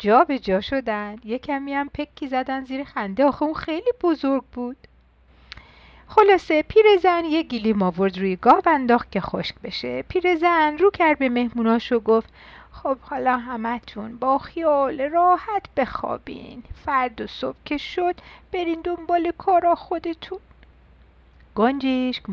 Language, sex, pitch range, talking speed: Persian, female, 220-310 Hz, 145 wpm